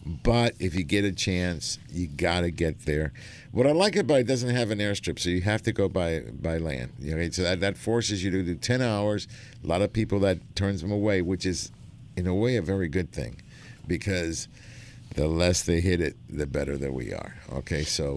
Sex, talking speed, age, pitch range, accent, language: male, 230 wpm, 50-69, 90-115 Hz, American, English